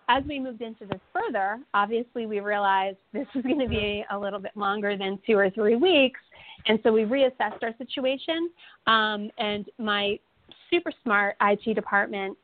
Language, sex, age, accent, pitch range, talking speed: English, female, 30-49, American, 200-250 Hz, 175 wpm